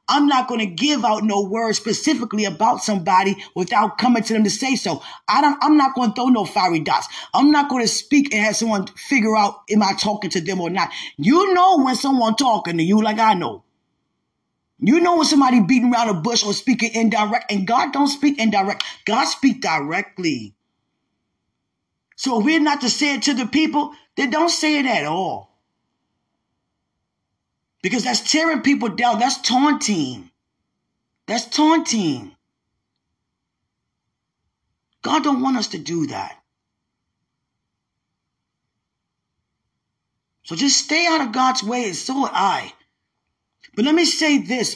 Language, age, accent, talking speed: English, 20-39, American, 165 wpm